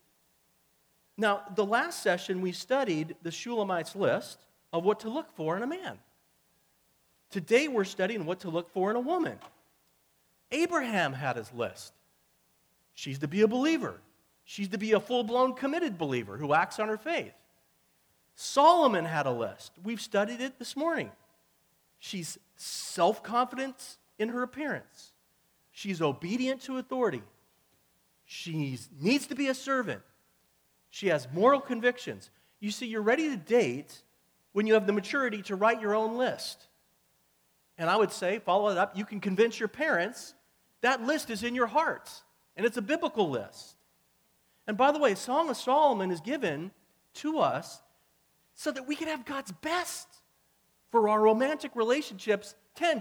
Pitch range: 165-265 Hz